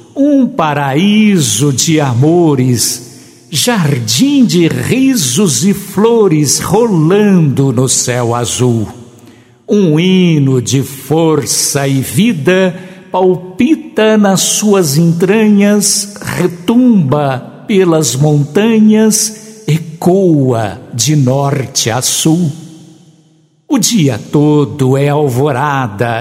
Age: 60-79